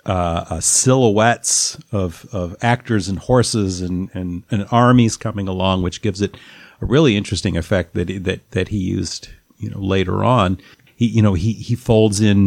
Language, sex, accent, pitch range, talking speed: English, male, American, 90-110 Hz, 180 wpm